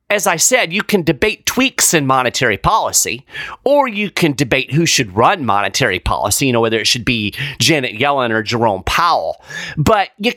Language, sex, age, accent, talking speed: English, male, 30-49, American, 185 wpm